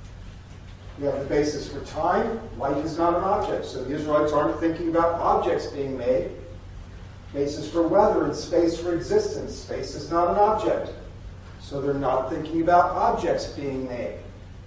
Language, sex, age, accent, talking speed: English, male, 50-69, American, 170 wpm